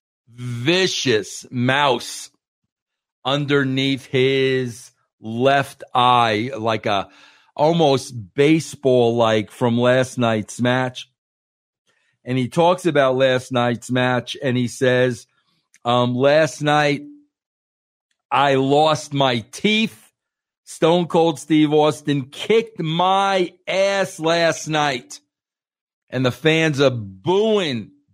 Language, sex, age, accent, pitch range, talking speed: English, male, 50-69, American, 120-150 Hz, 100 wpm